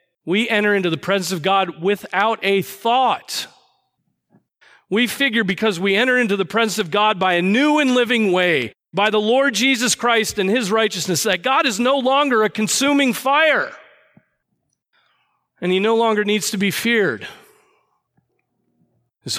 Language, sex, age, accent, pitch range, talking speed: English, male, 40-59, American, 170-215 Hz, 160 wpm